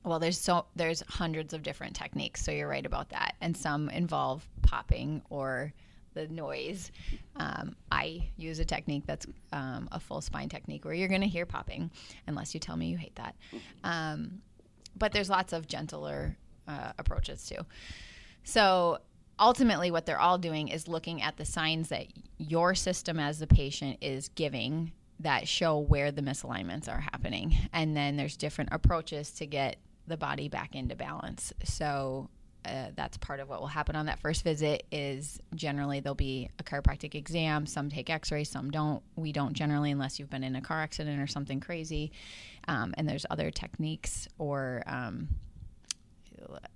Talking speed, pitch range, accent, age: 175 wpm, 140-165 Hz, American, 20-39